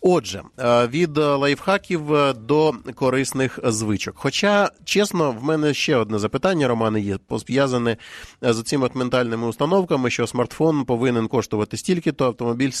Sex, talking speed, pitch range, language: male, 120 wpm, 120-150 Hz, Ukrainian